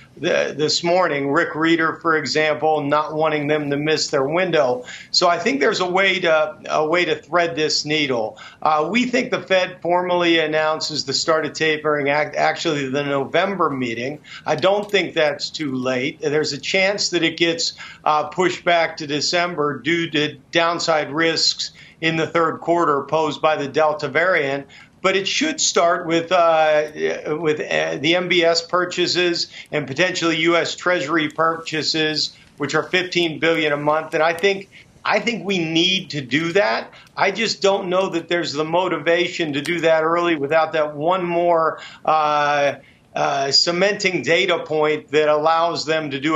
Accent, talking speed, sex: American, 170 wpm, male